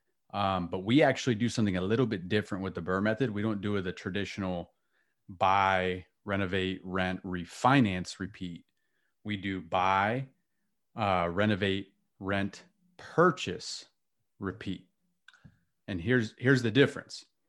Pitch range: 95-115 Hz